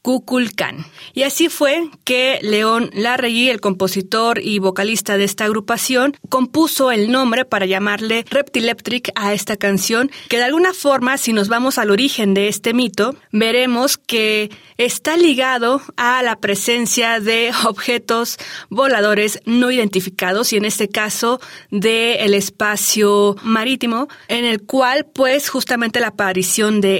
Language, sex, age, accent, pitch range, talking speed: Spanish, female, 30-49, Mexican, 205-250 Hz, 135 wpm